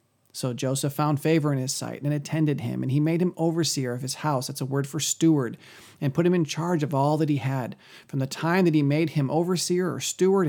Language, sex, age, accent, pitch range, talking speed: English, male, 40-59, American, 130-175 Hz, 235 wpm